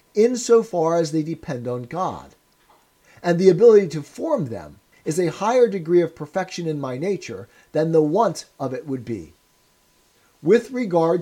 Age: 50-69